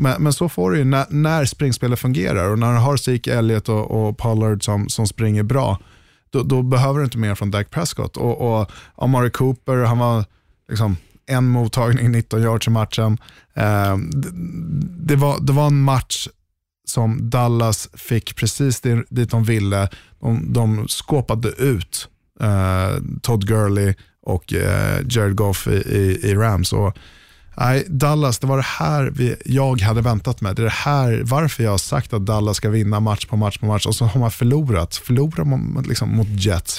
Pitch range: 105-130 Hz